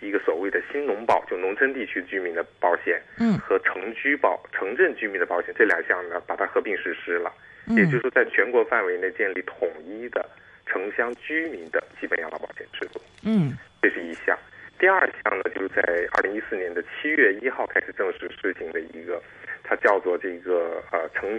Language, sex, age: Chinese, male, 50-69